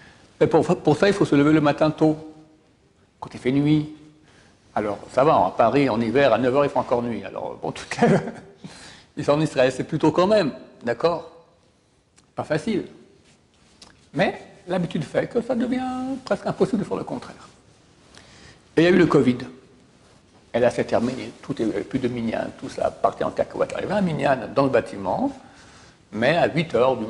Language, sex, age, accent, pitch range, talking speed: French, male, 60-79, French, 130-180 Hz, 195 wpm